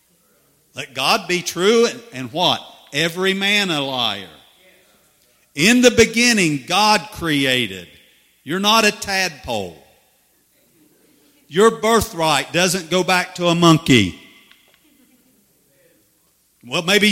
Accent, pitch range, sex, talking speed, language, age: American, 130-190 Hz, male, 105 wpm, English, 50-69